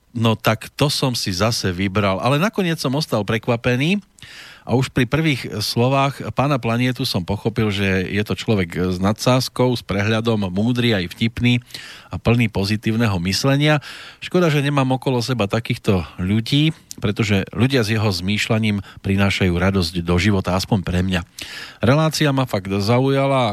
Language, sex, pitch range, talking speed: Slovak, male, 100-125 Hz, 150 wpm